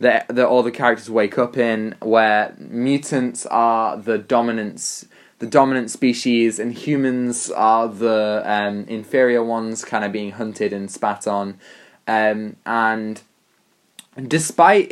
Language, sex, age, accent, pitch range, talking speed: English, male, 20-39, British, 105-125 Hz, 130 wpm